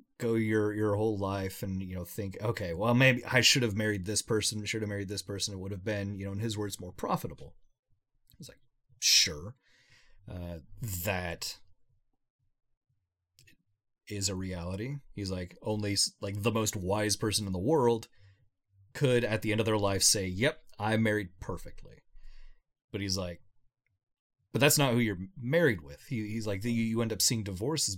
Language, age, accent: English, 30-49, American